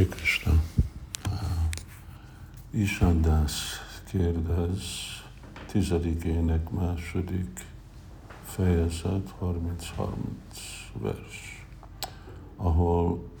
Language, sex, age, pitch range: Hungarian, male, 60-79, 90-105 Hz